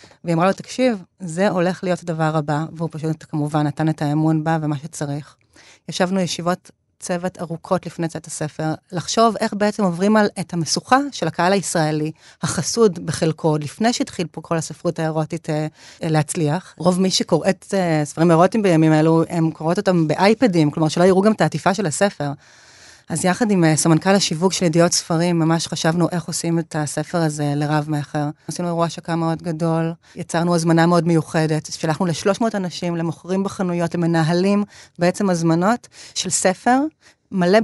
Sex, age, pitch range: female, 30-49, 160-190 Hz